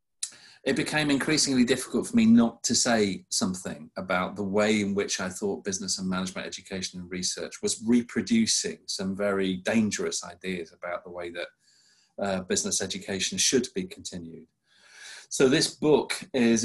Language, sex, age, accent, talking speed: English, male, 40-59, British, 155 wpm